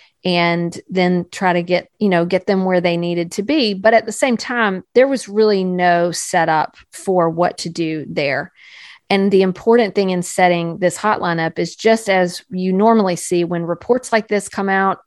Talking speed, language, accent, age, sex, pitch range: 200 wpm, English, American, 40-59, female, 175-205 Hz